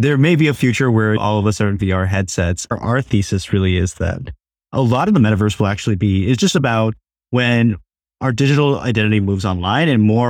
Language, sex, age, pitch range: English, male, 20-39, 100-130 Hz